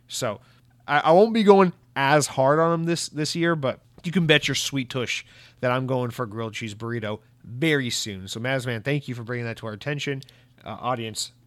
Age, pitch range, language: 30-49, 120-155 Hz, English